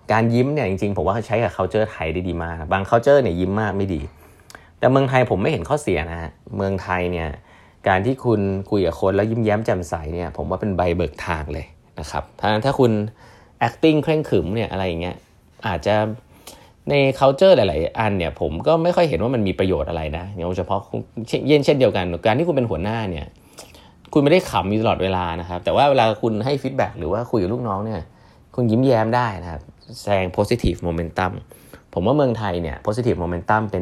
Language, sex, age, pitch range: Thai, male, 20-39, 85-115 Hz